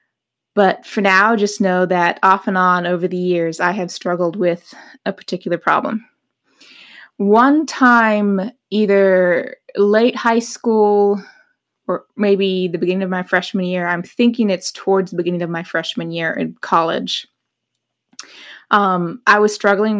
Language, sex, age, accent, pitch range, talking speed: English, female, 20-39, American, 180-220 Hz, 145 wpm